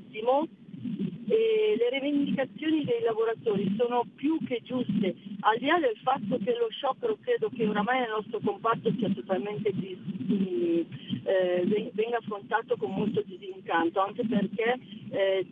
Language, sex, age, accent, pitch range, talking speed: Italian, female, 40-59, native, 195-250 Hz, 130 wpm